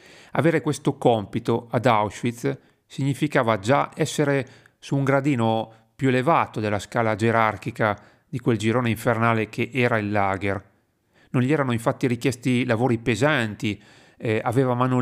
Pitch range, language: 110-135 Hz, Italian